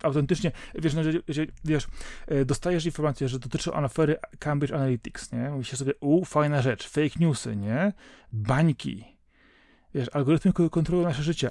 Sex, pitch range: male, 130-165 Hz